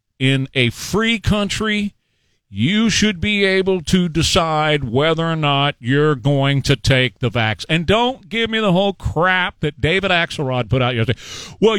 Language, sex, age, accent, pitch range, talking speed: English, male, 40-59, American, 115-195 Hz, 170 wpm